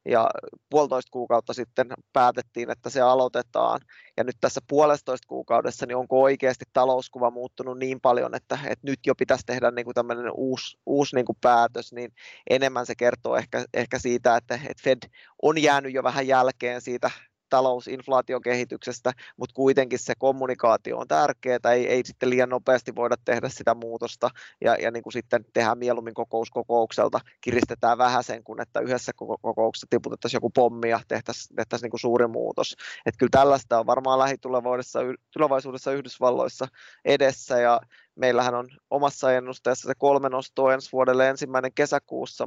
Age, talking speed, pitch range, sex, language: 20-39, 150 wpm, 120-135 Hz, male, Finnish